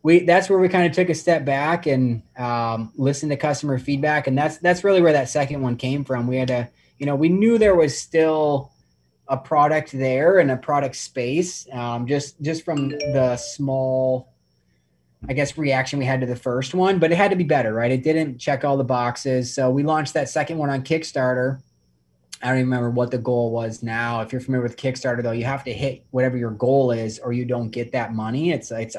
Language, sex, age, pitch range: English, male, 20-39, 125-145 Hz